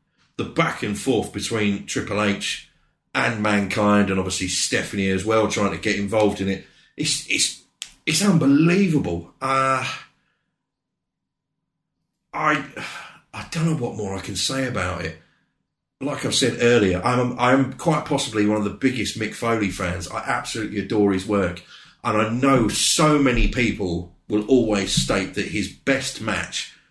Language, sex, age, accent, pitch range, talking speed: English, male, 30-49, British, 90-115 Hz, 155 wpm